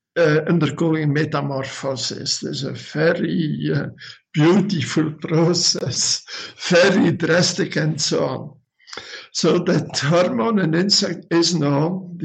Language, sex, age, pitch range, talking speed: English, male, 60-79, 155-180 Hz, 110 wpm